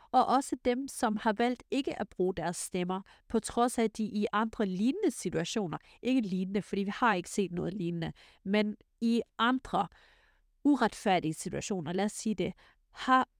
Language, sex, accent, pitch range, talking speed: Danish, female, native, 195-235 Hz, 170 wpm